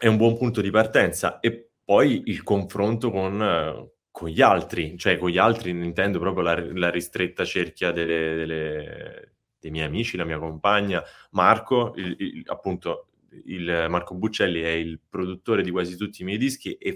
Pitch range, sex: 90-115 Hz, male